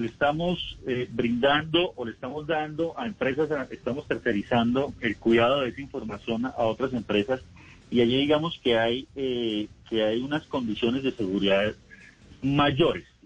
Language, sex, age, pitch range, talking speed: Spanish, male, 40-59, 110-140 Hz, 150 wpm